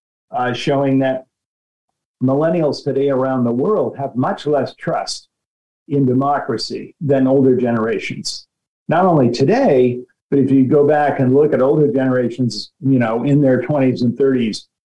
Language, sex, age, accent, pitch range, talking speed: English, male, 50-69, American, 130-190 Hz, 150 wpm